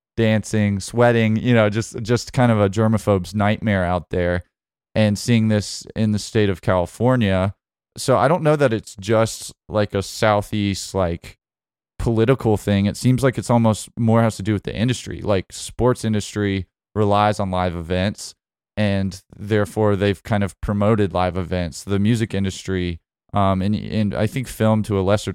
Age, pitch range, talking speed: 20-39, 95-110 Hz, 175 wpm